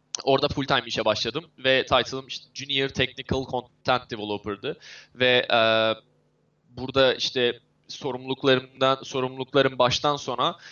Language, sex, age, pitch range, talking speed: Turkish, male, 20-39, 125-145 Hz, 105 wpm